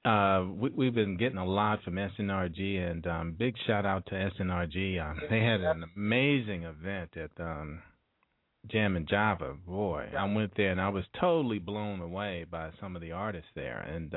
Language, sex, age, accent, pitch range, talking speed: English, male, 40-59, American, 85-105 Hz, 185 wpm